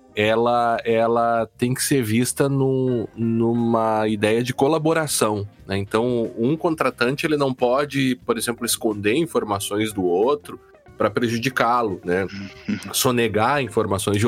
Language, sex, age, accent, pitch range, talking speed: Portuguese, male, 20-39, Brazilian, 115-150 Hz, 125 wpm